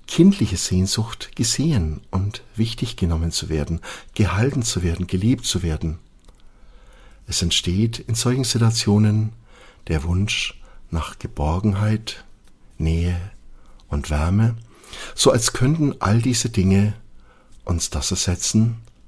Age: 60-79